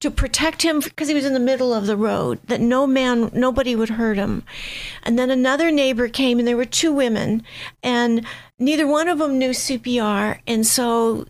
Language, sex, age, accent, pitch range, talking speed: English, female, 50-69, American, 225-265 Hz, 200 wpm